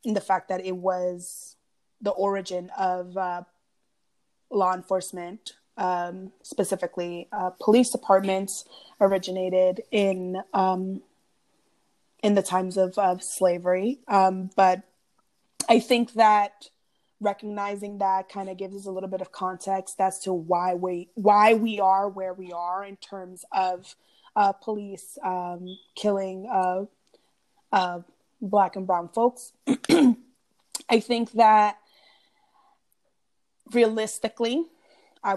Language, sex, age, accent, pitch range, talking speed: English, female, 20-39, American, 185-210 Hz, 120 wpm